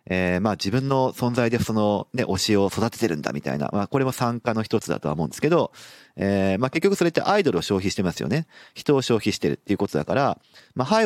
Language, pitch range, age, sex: Japanese, 90-145 Hz, 40-59, male